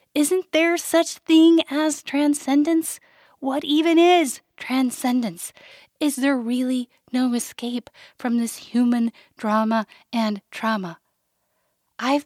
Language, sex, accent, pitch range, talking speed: English, female, American, 215-285 Hz, 110 wpm